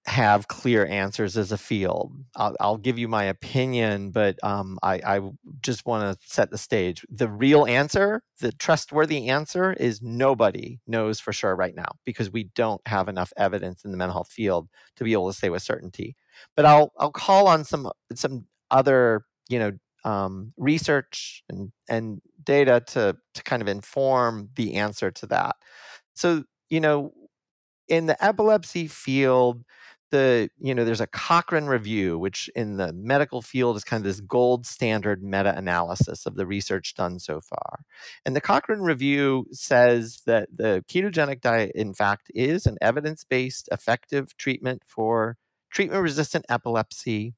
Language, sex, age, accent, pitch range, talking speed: English, male, 40-59, American, 105-150 Hz, 160 wpm